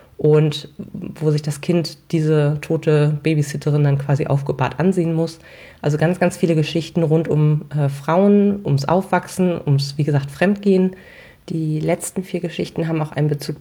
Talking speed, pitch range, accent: 160 wpm, 140-165 Hz, German